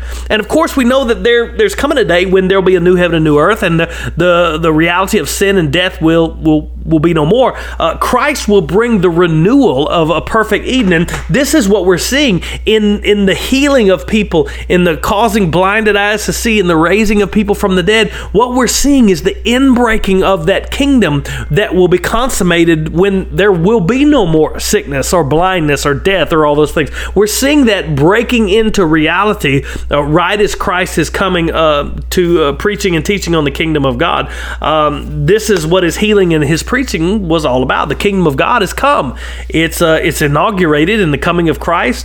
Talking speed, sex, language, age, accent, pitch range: 215 wpm, male, English, 40-59, American, 160-210 Hz